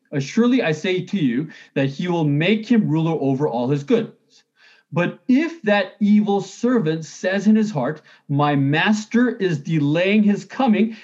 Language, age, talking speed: English, 30-49, 165 wpm